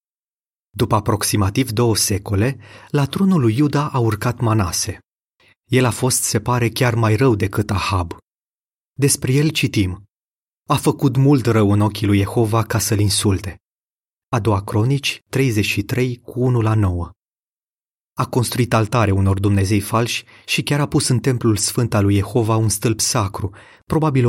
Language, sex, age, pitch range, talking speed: Romanian, male, 30-49, 100-125 Hz, 155 wpm